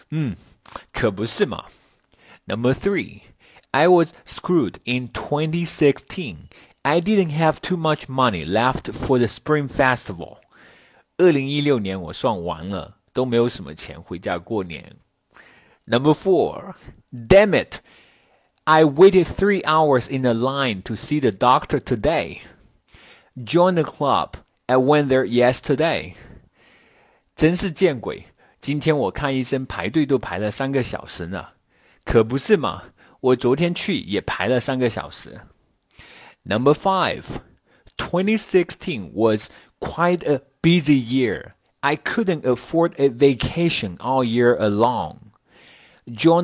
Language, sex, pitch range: Chinese, male, 120-160 Hz